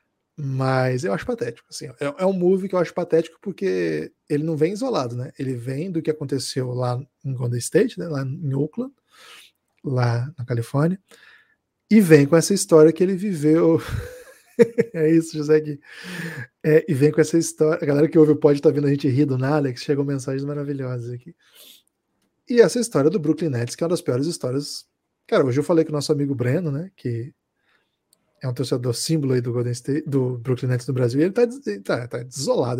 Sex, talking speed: male, 205 wpm